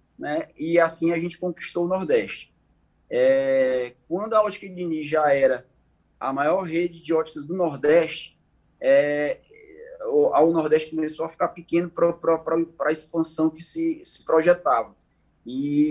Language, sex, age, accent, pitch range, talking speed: Portuguese, male, 20-39, Brazilian, 135-180 Hz, 145 wpm